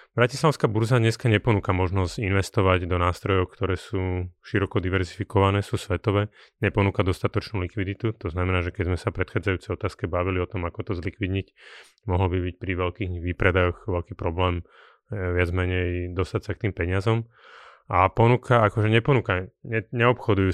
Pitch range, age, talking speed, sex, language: 90-110 Hz, 30-49, 150 wpm, male, Slovak